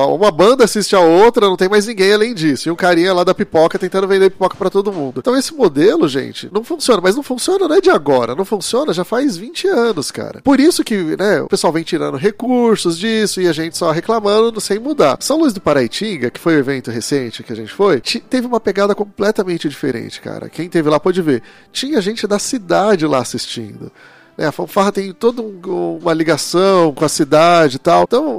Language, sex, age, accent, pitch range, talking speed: Portuguese, male, 30-49, Brazilian, 160-235 Hz, 220 wpm